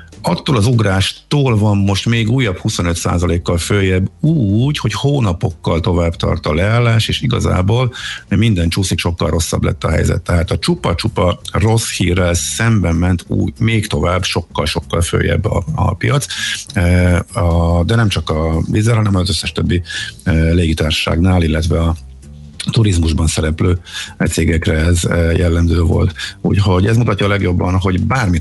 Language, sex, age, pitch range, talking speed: Hungarian, male, 50-69, 85-110 Hz, 140 wpm